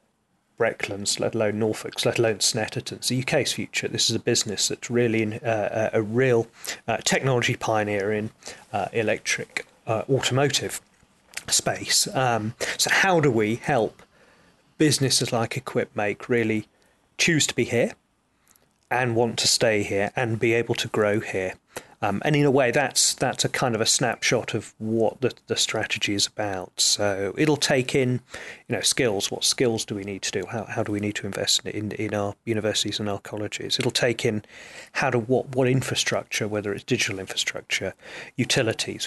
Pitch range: 105-125 Hz